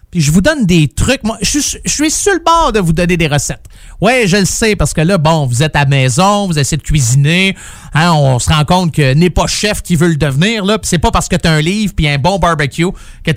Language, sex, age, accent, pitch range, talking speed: French, male, 30-49, Canadian, 150-210 Hz, 285 wpm